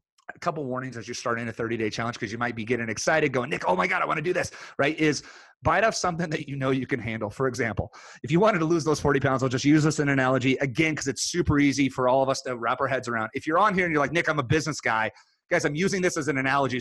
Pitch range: 125-180 Hz